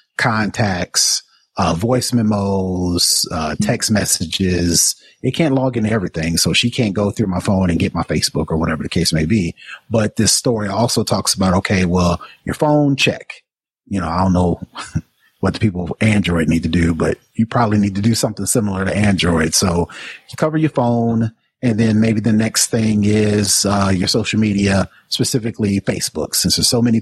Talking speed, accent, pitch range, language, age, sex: 190 wpm, American, 95-115 Hz, English, 30-49, male